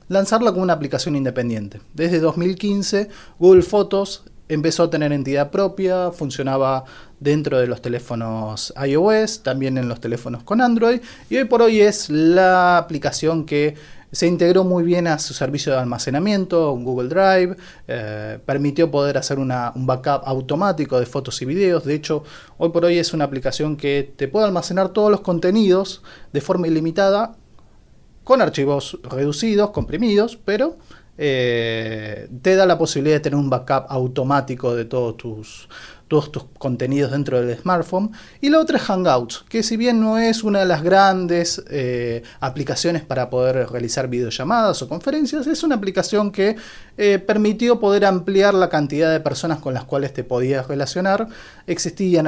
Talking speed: 160 wpm